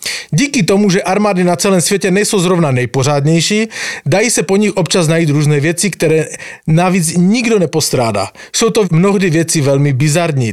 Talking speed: 160 wpm